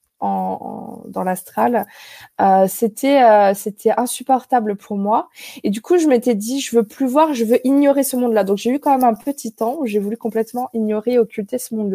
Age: 20-39